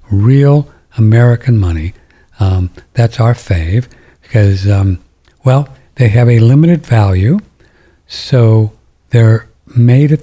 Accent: American